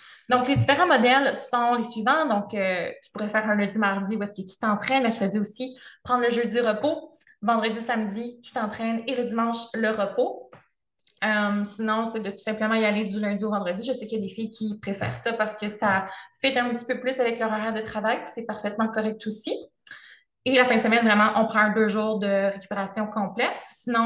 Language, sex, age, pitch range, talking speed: French, female, 20-39, 210-240 Hz, 215 wpm